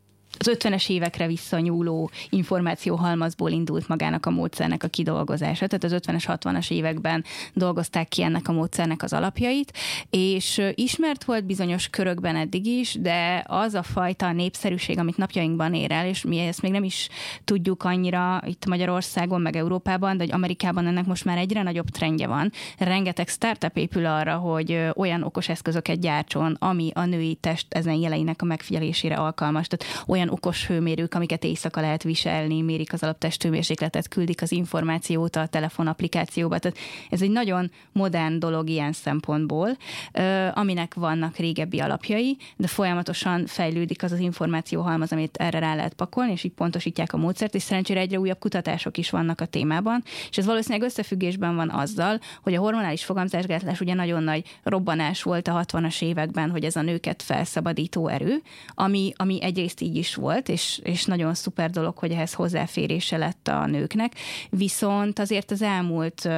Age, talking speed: 20-39, 160 wpm